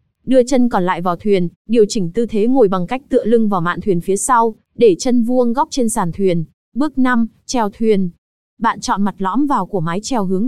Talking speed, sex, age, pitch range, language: 230 wpm, female, 20-39, 195-250 Hz, Vietnamese